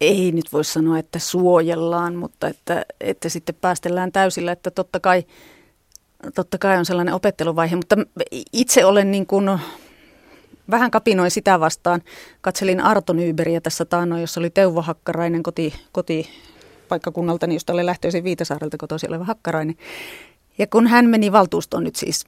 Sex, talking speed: female, 145 wpm